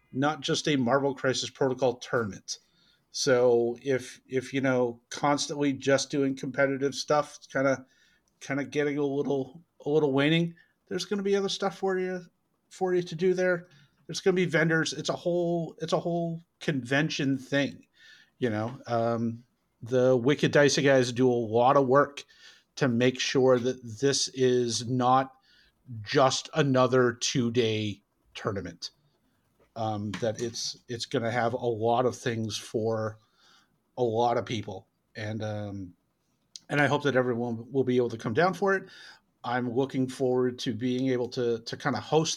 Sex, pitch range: male, 125-150 Hz